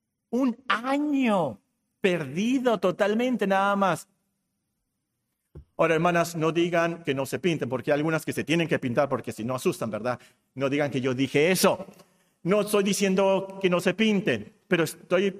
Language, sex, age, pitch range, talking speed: Spanish, male, 50-69, 130-195 Hz, 165 wpm